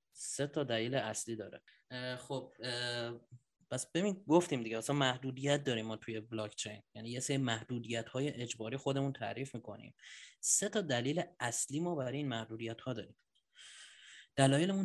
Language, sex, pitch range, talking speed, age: Persian, male, 115-140 Hz, 155 wpm, 30-49